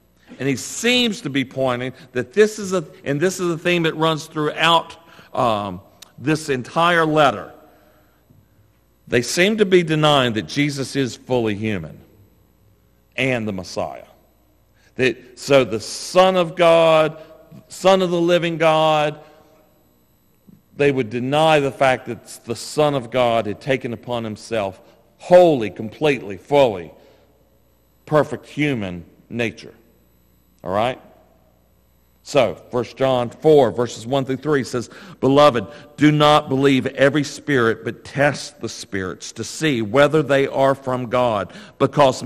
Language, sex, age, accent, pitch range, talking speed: English, male, 50-69, American, 120-155 Hz, 135 wpm